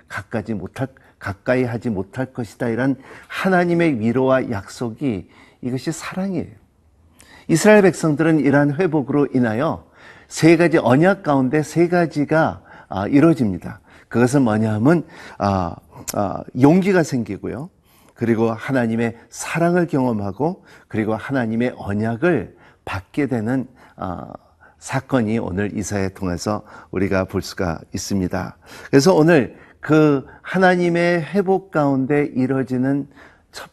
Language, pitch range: Korean, 105-145 Hz